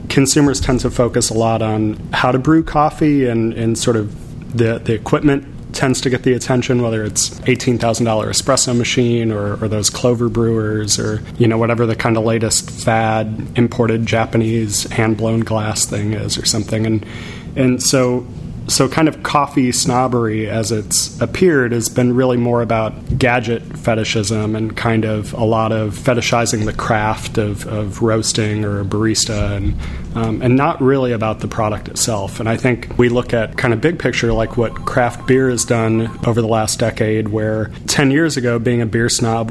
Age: 30-49